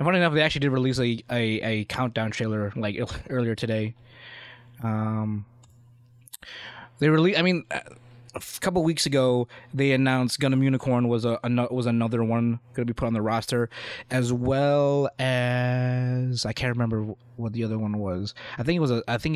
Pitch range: 115-130 Hz